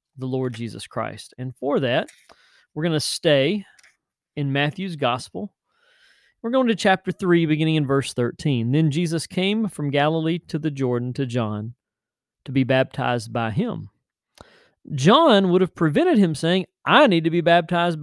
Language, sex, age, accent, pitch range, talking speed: English, male, 40-59, American, 125-170 Hz, 165 wpm